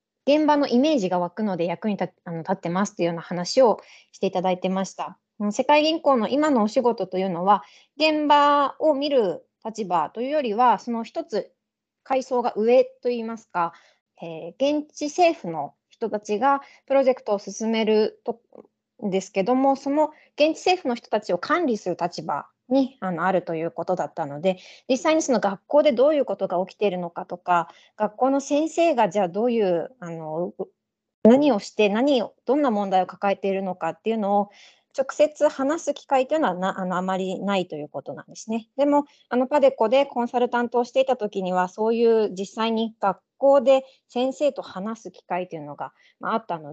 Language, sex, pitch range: Japanese, female, 185-260 Hz